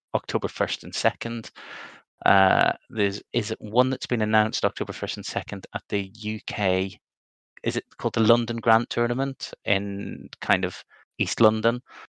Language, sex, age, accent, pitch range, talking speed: English, male, 20-39, British, 95-115 Hz, 150 wpm